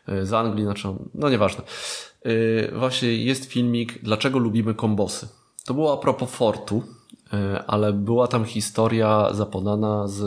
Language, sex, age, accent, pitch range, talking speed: Polish, male, 20-39, native, 100-125 Hz, 140 wpm